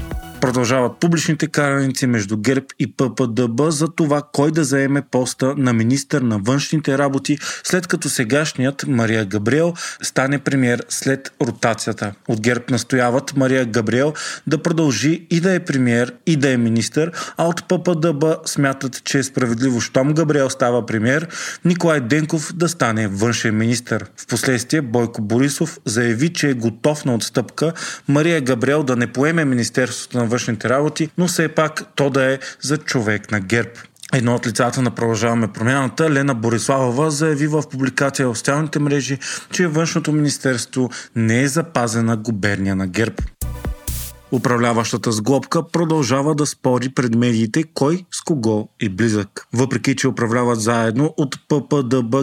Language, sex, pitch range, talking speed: Bulgarian, male, 120-150 Hz, 145 wpm